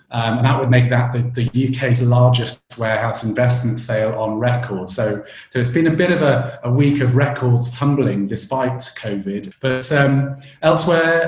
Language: English